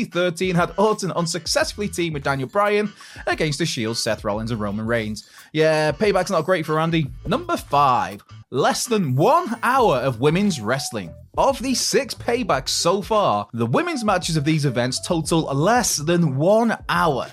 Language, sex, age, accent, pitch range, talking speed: English, male, 20-39, British, 135-210 Hz, 165 wpm